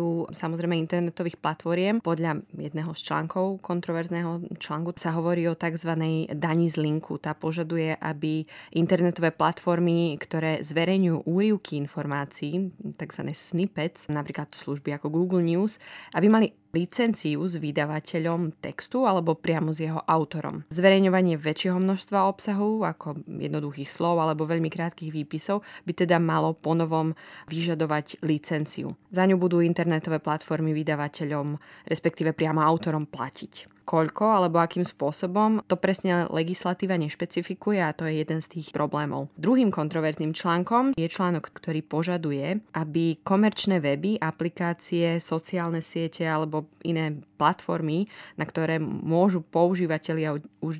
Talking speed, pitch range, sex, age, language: 125 wpm, 155-180 Hz, female, 20-39, Slovak